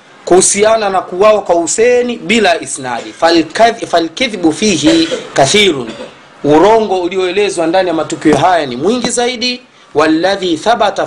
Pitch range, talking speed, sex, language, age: 155-230 Hz, 115 wpm, male, Swahili, 30-49